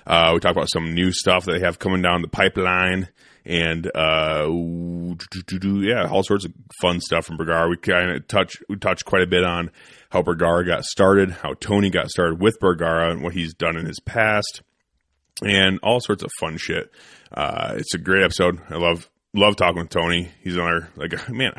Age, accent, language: 30-49, American, English